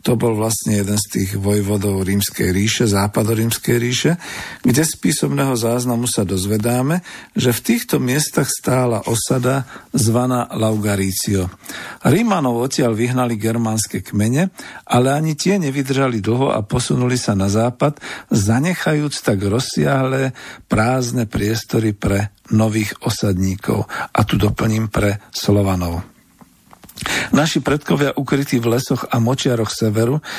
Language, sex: Slovak, male